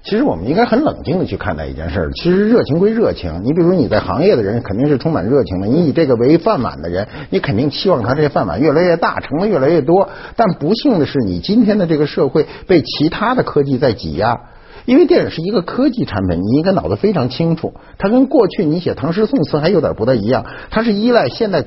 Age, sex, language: 60-79, male, Chinese